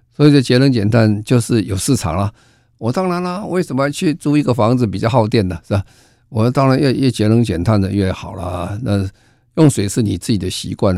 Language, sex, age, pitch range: Chinese, male, 50-69, 100-125 Hz